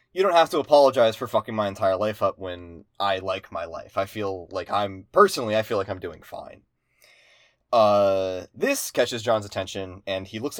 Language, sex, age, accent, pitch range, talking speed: English, male, 20-39, American, 100-135 Hz, 200 wpm